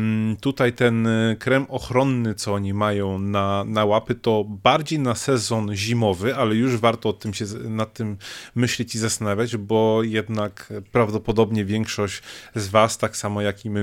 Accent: native